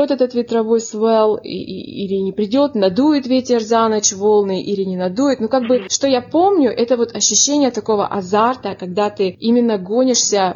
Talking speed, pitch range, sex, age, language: 165 wpm, 200-250 Hz, female, 20-39, Russian